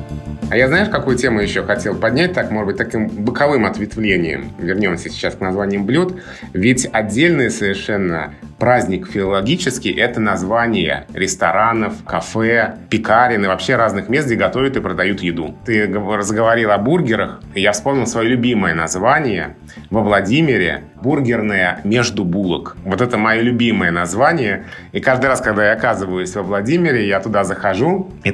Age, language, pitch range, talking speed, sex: 30-49, Russian, 90-115 Hz, 150 wpm, male